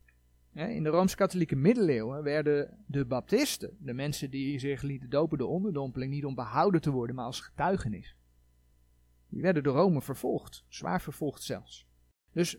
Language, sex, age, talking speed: Dutch, male, 40-59, 155 wpm